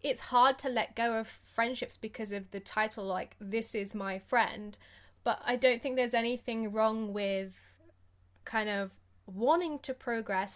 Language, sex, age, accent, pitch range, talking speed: English, female, 10-29, British, 195-240 Hz, 165 wpm